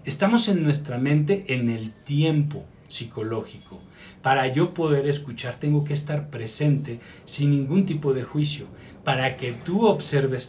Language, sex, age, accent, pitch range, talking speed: Spanish, male, 40-59, Mexican, 135-175 Hz, 145 wpm